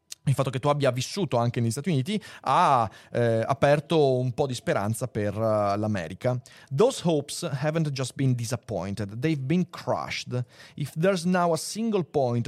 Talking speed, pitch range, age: 165 wpm, 120-155 Hz, 30-49